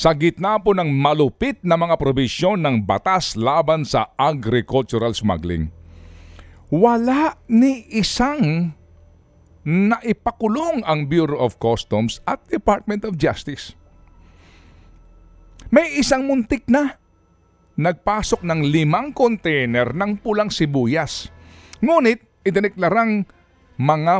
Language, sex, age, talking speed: Filipino, male, 50-69, 100 wpm